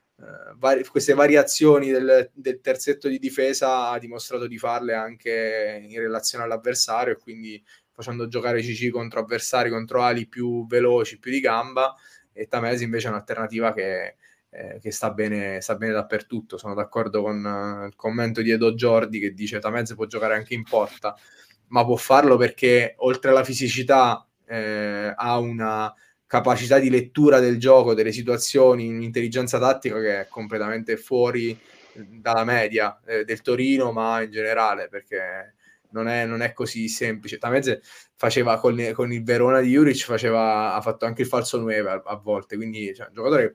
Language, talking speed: Italian, 170 wpm